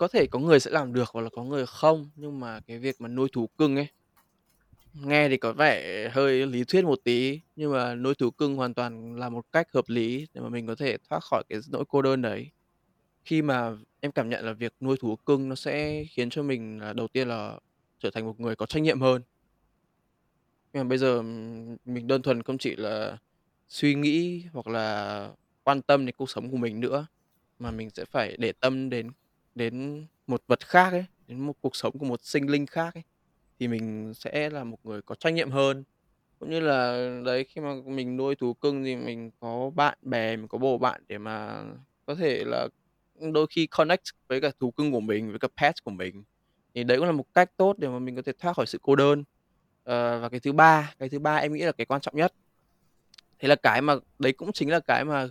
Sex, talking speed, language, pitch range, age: male, 230 wpm, Vietnamese, 120-145 Hz, 20-39